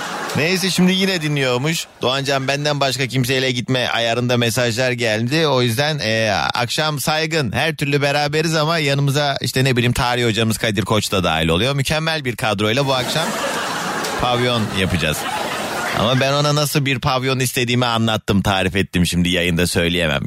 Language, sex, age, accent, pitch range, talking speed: Turkish, male, 30-49, native, 115-160 Hz, 155 wpm